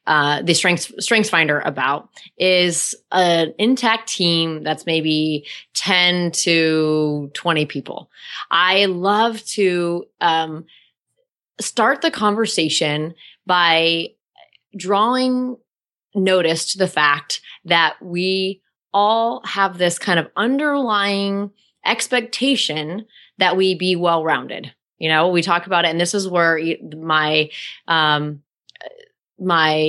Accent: American